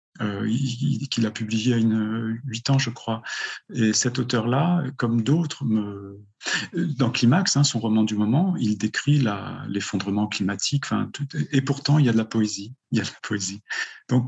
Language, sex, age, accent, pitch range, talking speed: French, male, 40-59, French, 110-140 Hz, 210 wpm